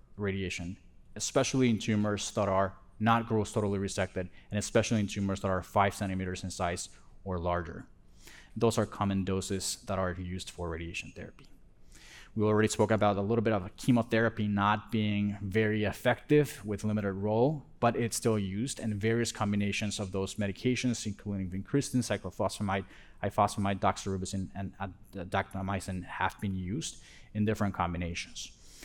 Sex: male